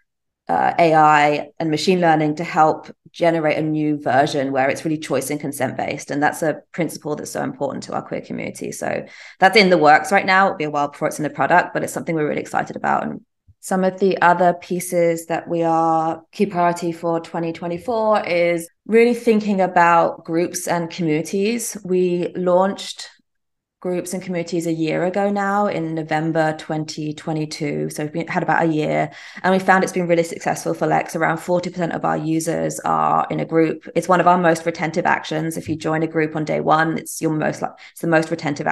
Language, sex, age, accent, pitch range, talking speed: English, female, 20-39, British, 155-185 Hz, 205 wpm